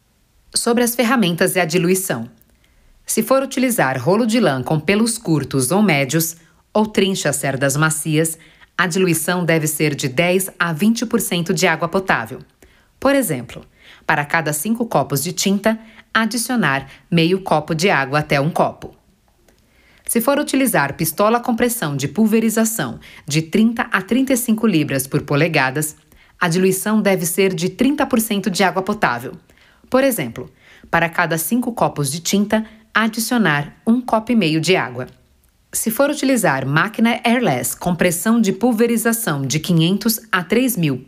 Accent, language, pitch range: Brazilian, Portuguese, 160-225 Hz